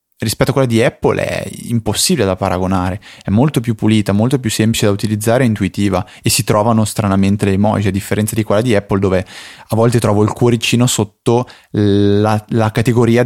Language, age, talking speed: Italian, 20-39, 190 wpm